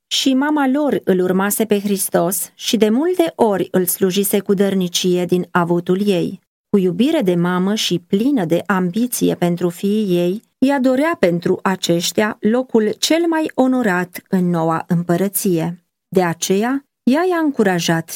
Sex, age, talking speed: female, 30-49, 150 wpm